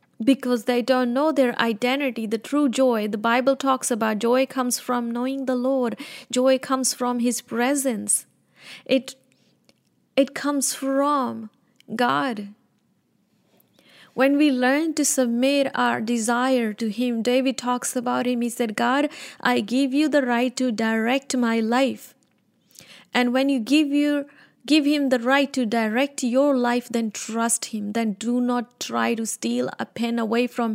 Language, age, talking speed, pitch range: English, 20-39, 155 wpm, 235-265 Hz